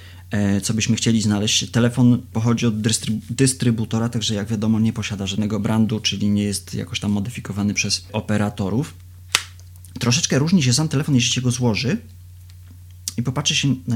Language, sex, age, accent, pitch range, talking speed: Polish, male, 30-49, native, 95-120 Hz, 155 wpm